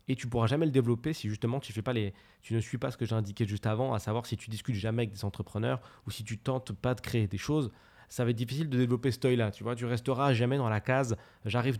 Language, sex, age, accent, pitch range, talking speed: French, male, 20-39, French, 105-130 Hz, 305 wpm